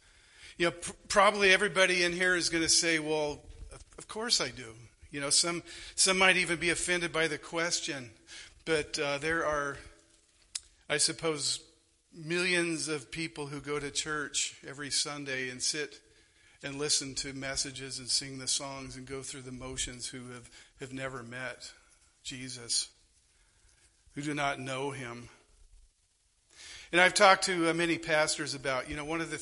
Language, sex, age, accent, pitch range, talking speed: English, male, 50-69, American, 125-155 Hz, 165 wpm